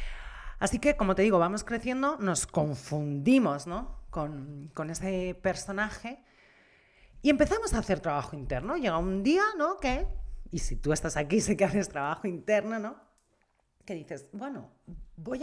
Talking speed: 155 wpm